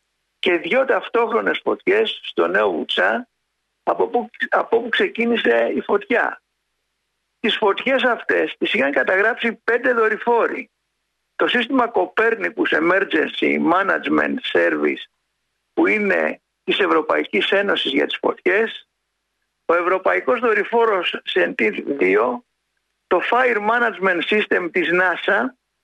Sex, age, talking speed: male, 60-79, 105 wpm